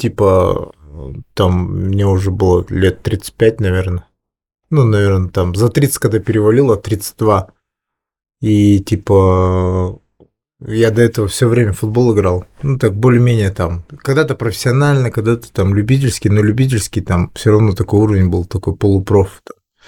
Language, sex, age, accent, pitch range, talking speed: Russian, male, 20-39, native, 100-120 Hz, 135 wpm